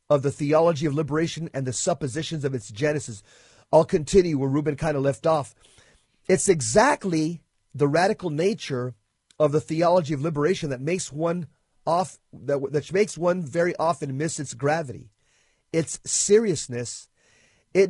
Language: English